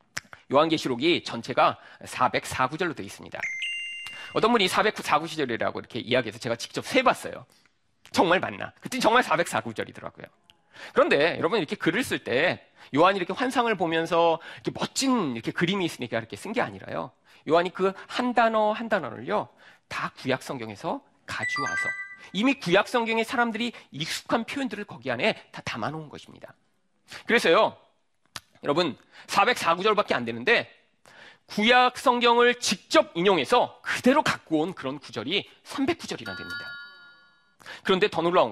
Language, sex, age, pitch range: Korean, male, 40-59, 165-250 Hz